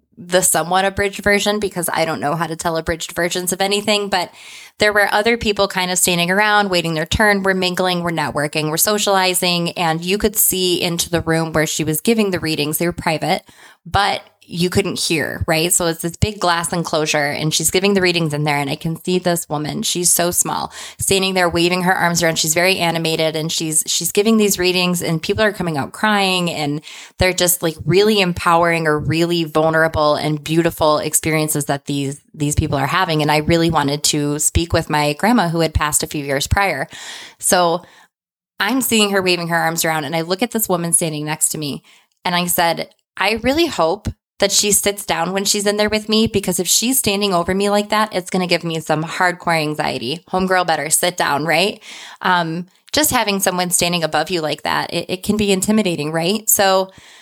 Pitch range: 160-195 Hz